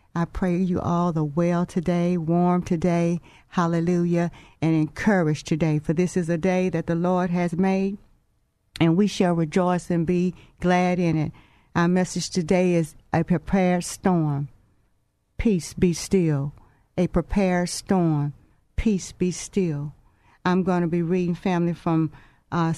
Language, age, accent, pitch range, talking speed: English, 50-69, American, 165-195 Hz, 150 wpm